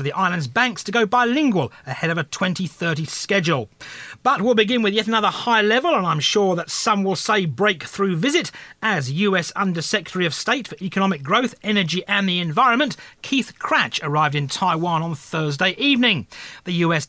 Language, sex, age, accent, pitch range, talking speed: English, male, 40-59, British, 155-220 Hz, 175 wpm